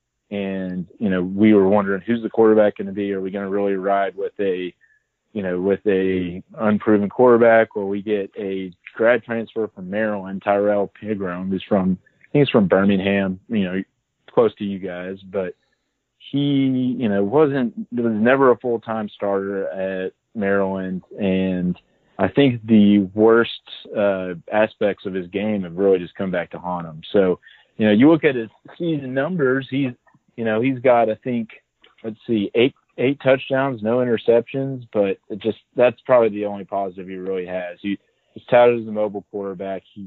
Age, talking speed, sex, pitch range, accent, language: 30-49, 180 wpm, male, 95-115 Hz, American, English